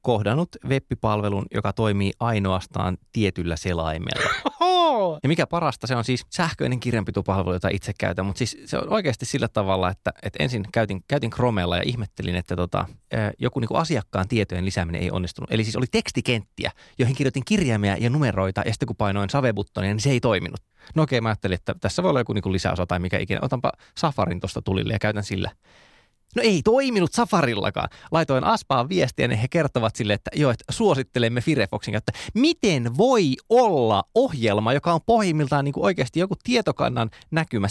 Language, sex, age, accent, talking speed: Finnish, male, 20-39, native, 175 wpm